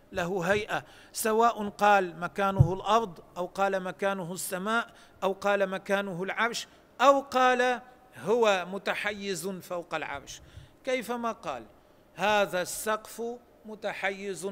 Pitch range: 160-210 Hz